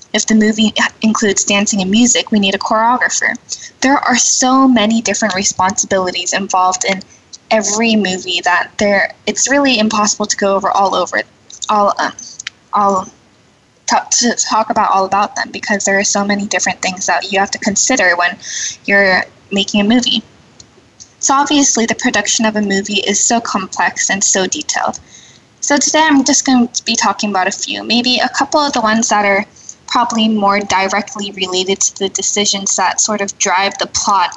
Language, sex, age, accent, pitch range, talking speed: English, female, 10-29, American, 195-235 Hz, 180 wpm